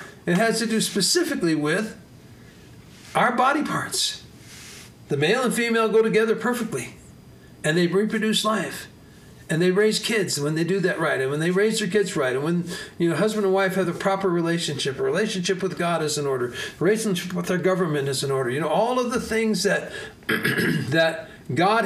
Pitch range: 170-225 Hz